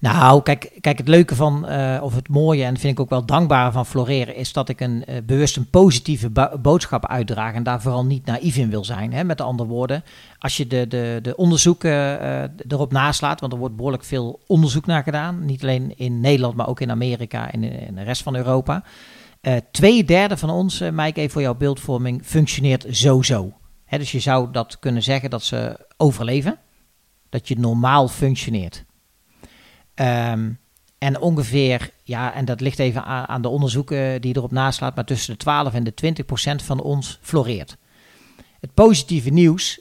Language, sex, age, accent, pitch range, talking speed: Dutch, male, 40-59, Dutch, 120-145 Hz, 195 wpm